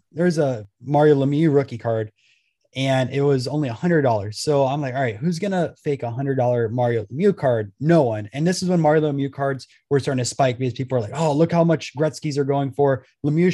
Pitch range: 125-155 Hz